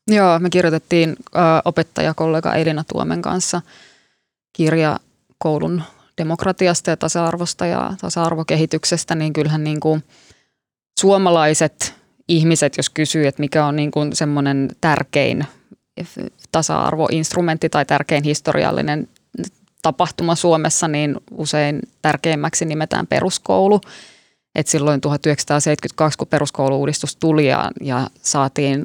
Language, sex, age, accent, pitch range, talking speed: English, female, 20-39, Finnish, 150-165 Hz, 100 wpm